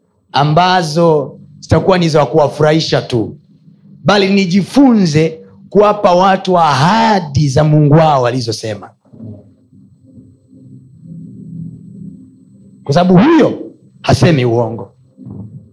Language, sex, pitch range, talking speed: Swahili, male, 130-200 Hz, 75 wpm